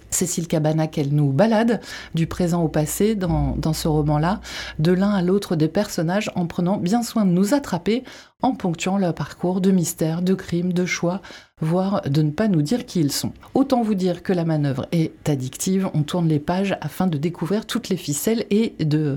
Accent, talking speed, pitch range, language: French, 205 wpm, 165-210 Hz, French